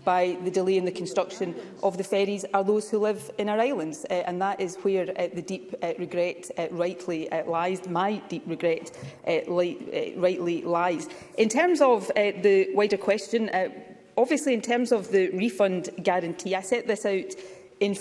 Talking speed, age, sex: 190 wpm, 30-49, female